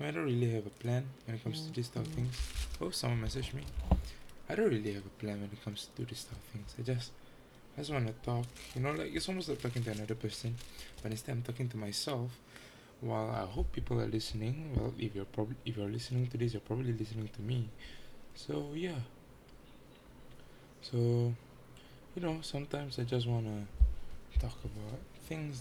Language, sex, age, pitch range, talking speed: English, male, 20-39, 110-130 Hz, 195 wpm